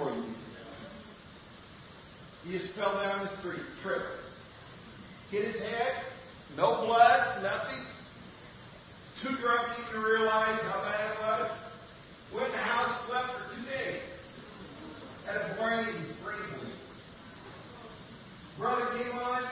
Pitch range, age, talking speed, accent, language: 185-235 Hz, 40-59, 115 wpm, American, English